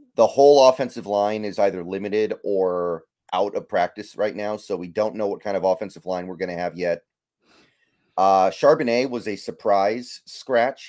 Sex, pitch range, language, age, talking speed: male, 90-110 Hz, English, 30-49, 180 wpm